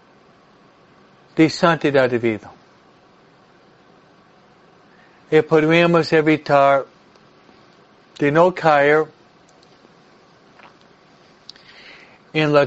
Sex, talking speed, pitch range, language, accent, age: male, 55 wpm, 140-170 Hz, Spanish, American, 60-79